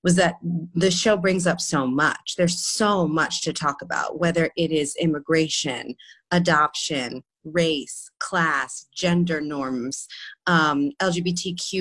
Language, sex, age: English, female, 30-49